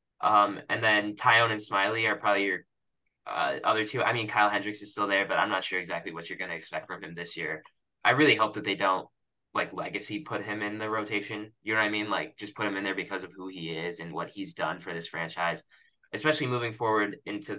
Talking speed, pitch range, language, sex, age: 250 wpm, 105-135 Hz, English, male, 10-29